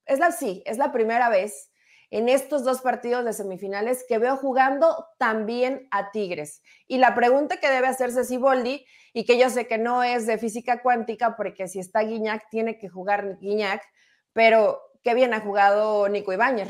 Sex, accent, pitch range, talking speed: female, Mexican, 210-260 Hz, 185 wpm